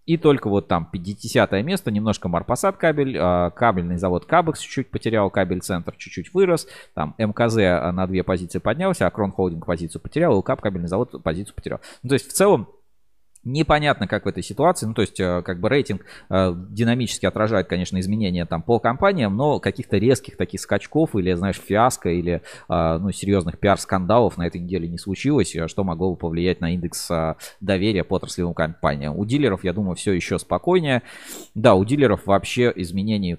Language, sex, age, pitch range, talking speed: Russian, male, 20-39, 85-110 Hz, 180 wpm